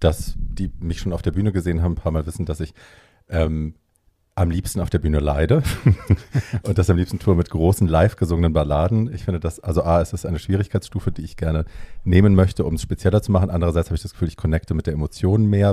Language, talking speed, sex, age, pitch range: German, 235 wpm, male, 40-59, 85-100 Hz